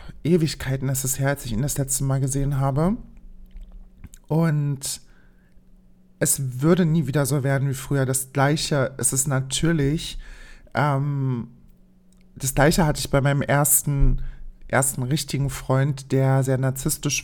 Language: German